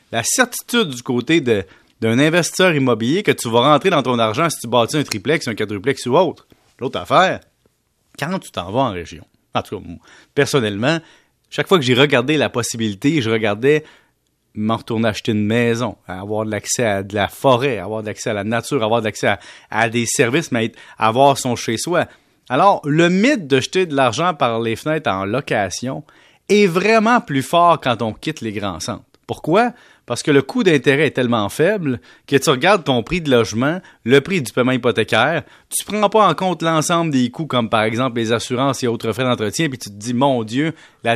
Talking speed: 215 wpm